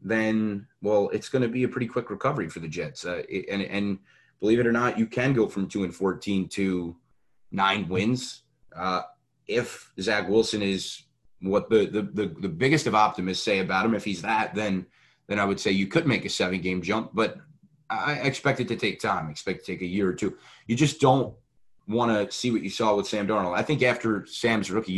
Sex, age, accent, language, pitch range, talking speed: male, 30-49, American, English, 95-115 Hz, 225 wpm